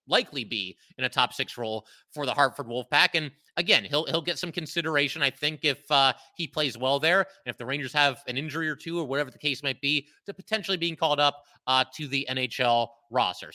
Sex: male